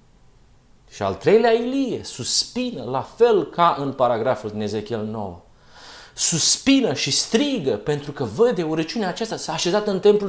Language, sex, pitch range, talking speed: Romanian, male, 130-220 Hz, 145 wpm